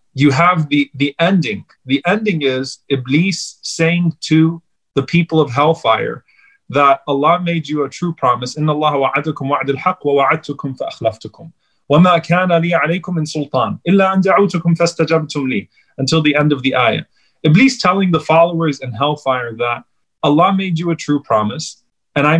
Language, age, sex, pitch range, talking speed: English, 30-49, male, 135-170 Hz, 135 wpm